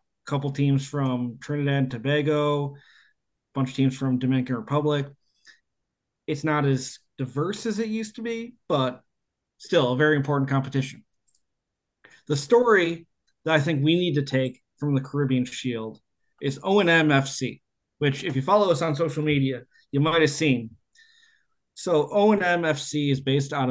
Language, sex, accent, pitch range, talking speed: English, male, American, 130-165 Hz, 150 wpm